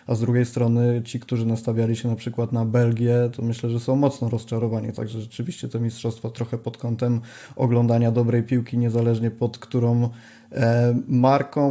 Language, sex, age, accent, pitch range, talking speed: Polish, male, 20-39, native, 115-125 Hz, 165 wpm